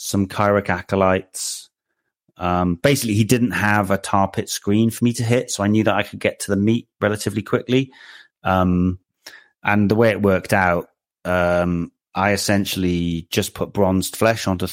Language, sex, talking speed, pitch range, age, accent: English, male, 175 wpm, 95-110 Hz, 30-49, British